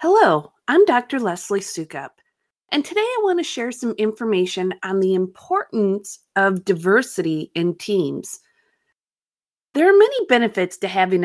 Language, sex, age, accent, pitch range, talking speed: English, female, 30-49, American, 185-270 Hz, 140 wpm